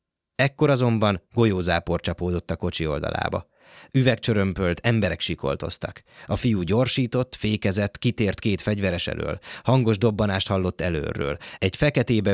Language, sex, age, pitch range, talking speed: Hungarian, male, 20-39, 85-115 Hz, 115 wpm